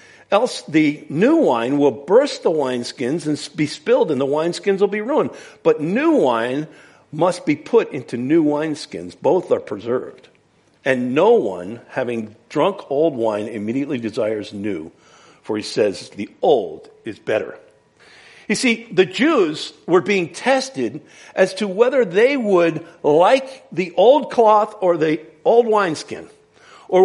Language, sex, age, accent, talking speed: English, male, 50-69, American, 150 wpm